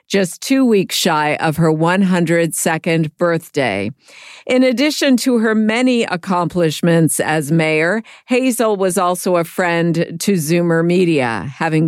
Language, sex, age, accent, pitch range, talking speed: English, female, 50-69, American, 155-185 Hz, 125 wpm